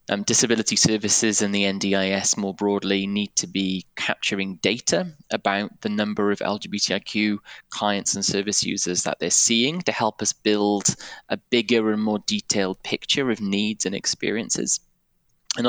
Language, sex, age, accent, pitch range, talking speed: English, male, 20-39, British, 100-115 Hz, 155 wpm